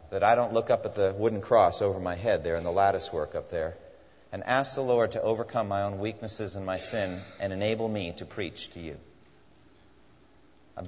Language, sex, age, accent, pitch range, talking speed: English, male, 40-59, American, 95-130 Hz, 215 wpm